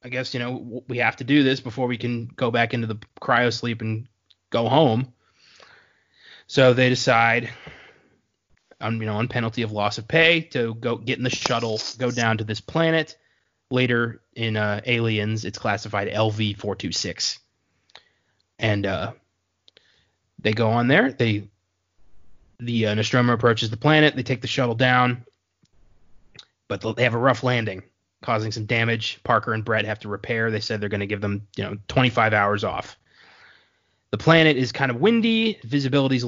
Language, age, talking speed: English, 20-39, 170 wpm